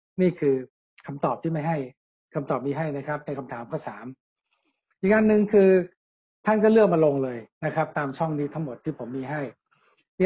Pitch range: 140-165 Hz